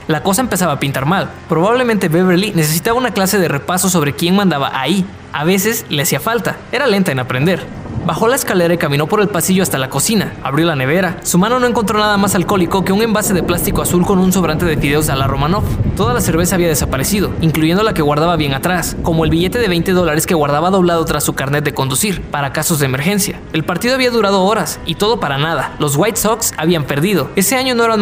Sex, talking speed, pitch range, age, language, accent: male, 230 wpm, 150-200 Hz, 20-39, Spanish, Mexican